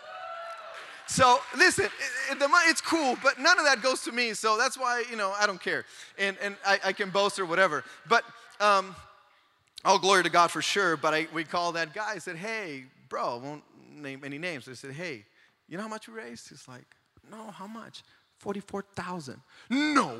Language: English